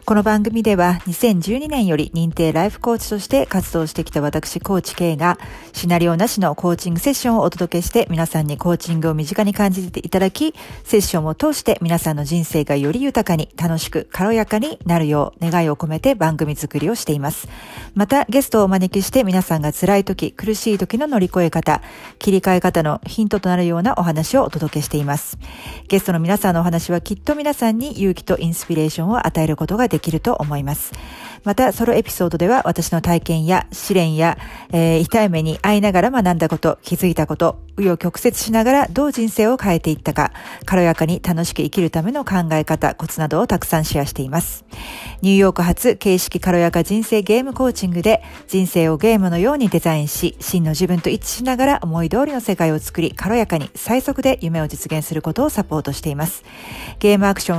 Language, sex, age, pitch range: Japanese, female, 50-69, 165-215 Hz